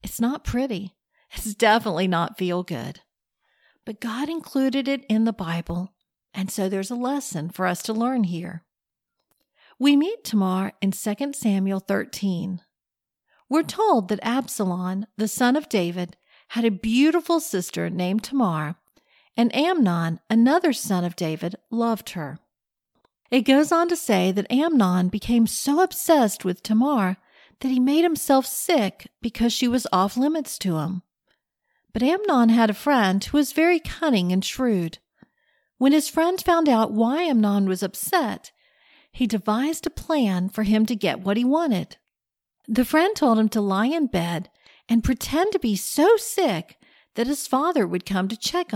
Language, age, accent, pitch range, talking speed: English, 50-69, American, 190-280 Hz, 160 wpm